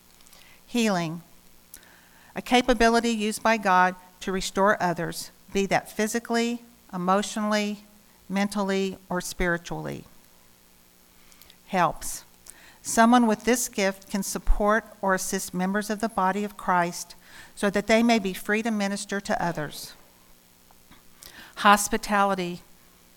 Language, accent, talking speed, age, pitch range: English, American, 110 wpm, 50-69, 165-215 Hz